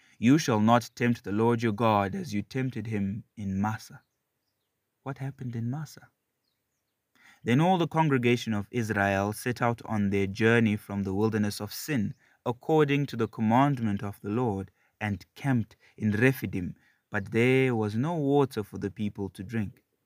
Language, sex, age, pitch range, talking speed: English, male, 30-49, 110-145 Hz, 165 wpm